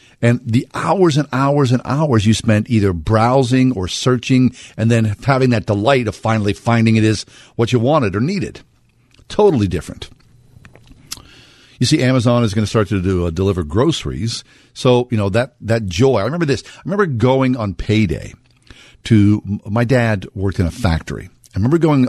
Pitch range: 100-130 Hz